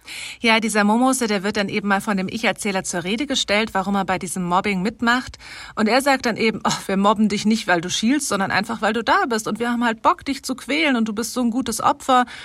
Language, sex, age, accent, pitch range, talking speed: German, female, 40-59, German, 200-235 Hz, 260 wpm